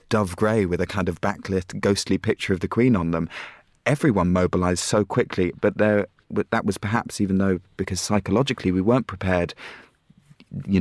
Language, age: English, 30-49